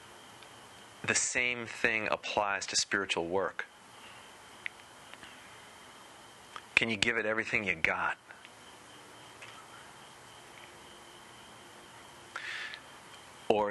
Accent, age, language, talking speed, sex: American, 30-49, English, 65 wpm, male